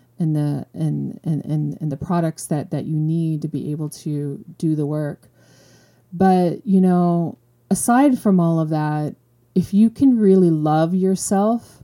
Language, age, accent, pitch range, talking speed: English, 30-49, American, 150-185 Hz, 165 wpm